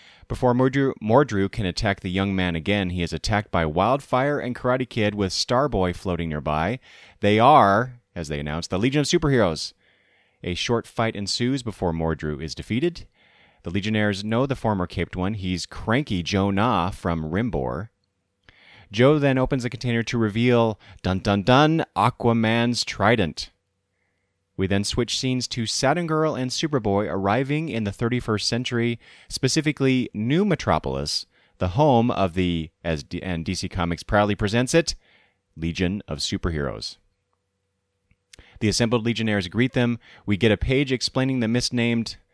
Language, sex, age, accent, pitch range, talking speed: English, male, 30-49, American, 90-120 Hz, 150 wpm